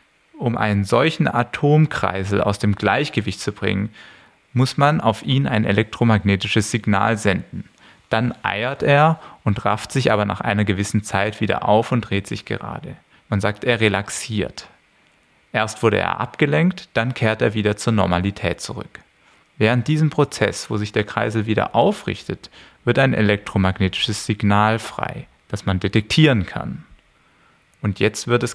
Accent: German